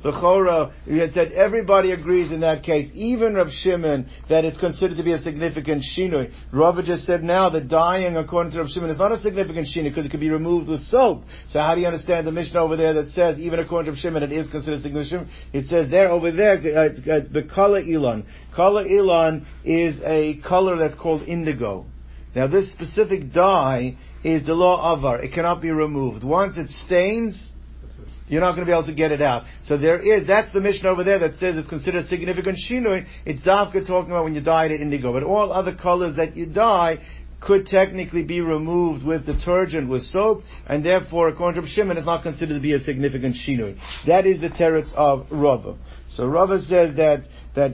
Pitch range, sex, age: 150-180 Hz, male, 60-79